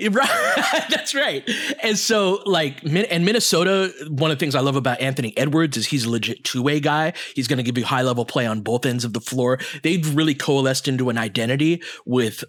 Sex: male